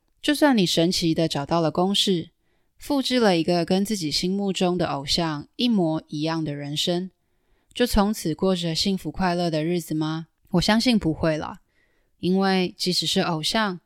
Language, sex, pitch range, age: Chinese, female, 160-195 Hz, 20-39